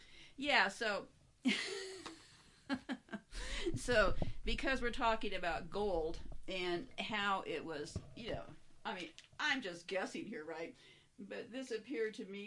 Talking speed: 125 wpm